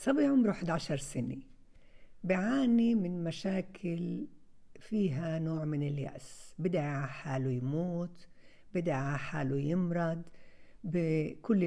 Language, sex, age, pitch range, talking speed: Arabic, female, 60-79, 155-205 Hz, 95 wpm